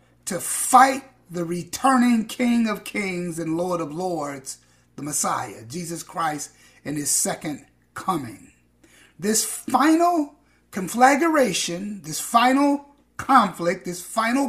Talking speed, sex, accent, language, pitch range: 110 wpm, male, American, English, 165-225 Hz